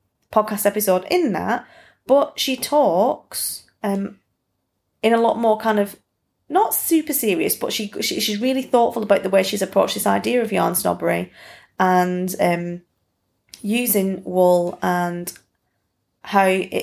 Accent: British